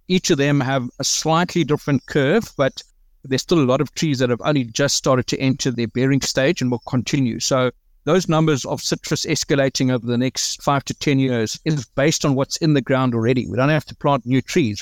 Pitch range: 130-160 Hz